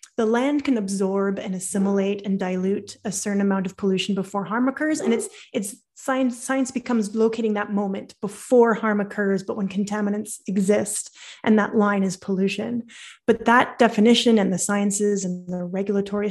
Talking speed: 170 wpm